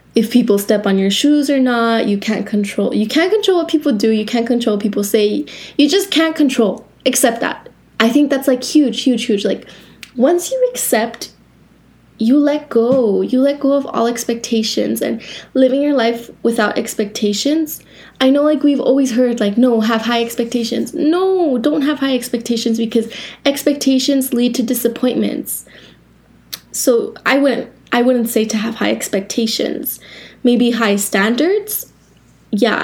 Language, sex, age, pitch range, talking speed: English, female, 10-29, 220-275 Hz, 165 wpm